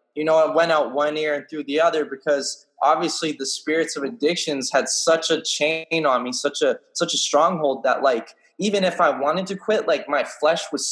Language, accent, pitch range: English, American, 130-165 Hz